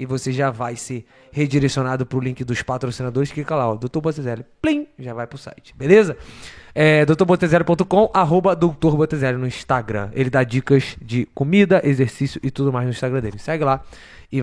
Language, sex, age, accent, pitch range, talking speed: Portuguese, male, 20-39, Brazilian, 125-160 Hz, 170 wpm